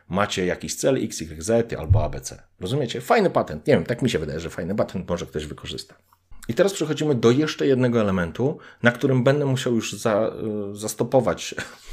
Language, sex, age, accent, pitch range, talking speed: Polish, male, 40-59, native, 100-125 Hz, 180 wpm